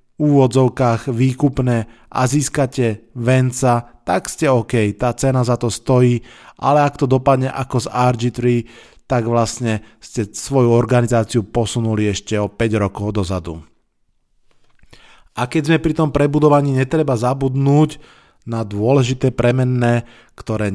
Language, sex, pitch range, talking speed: Slovak, male, 110-130 Hz, 125 wpm